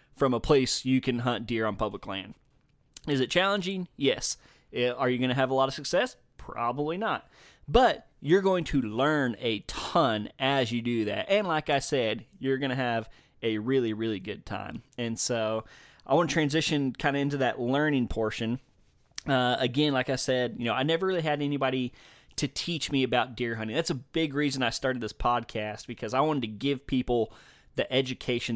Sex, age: male, 20-39